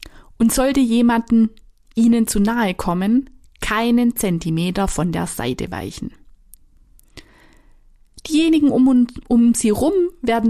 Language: German